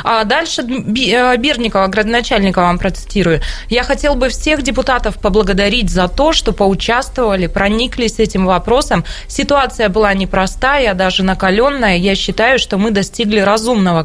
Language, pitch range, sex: Russian, 190-255 Hz, female